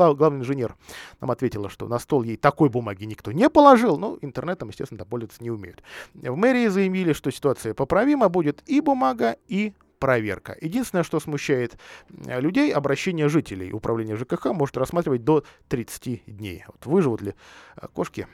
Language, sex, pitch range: Russian, male, 115-180 Hz